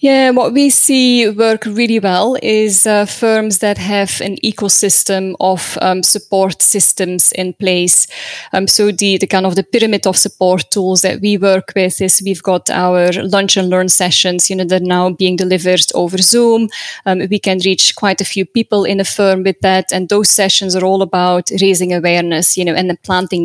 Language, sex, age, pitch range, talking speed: English, female, 10-29, 185-210 Hz, 200 wpm